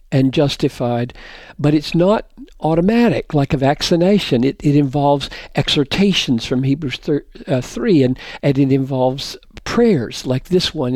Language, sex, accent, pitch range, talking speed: English, male, American, 140-180 Hz, 140 wpm